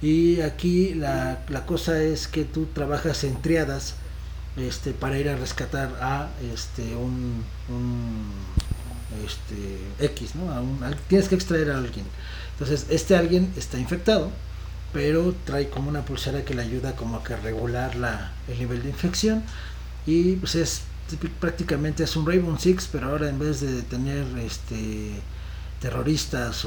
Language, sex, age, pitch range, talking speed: Spanish, male, 40-59, 105-155 Hz, 155 wpm